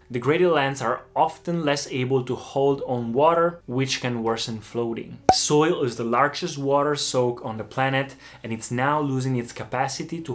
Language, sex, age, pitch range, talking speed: Italian, male, 20-39, 120-150 Hz, 175 wpm